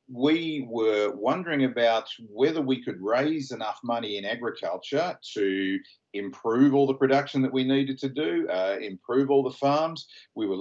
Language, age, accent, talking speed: English, 50-69, Australian, 165 wpm